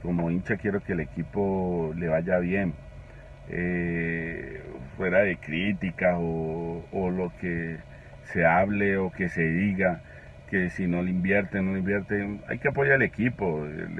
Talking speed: 160 wpm